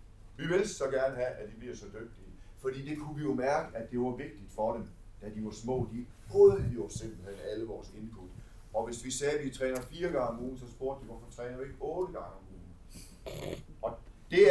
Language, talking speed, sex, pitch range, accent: Danish, 230 wpm, male, 105-135 Hz, native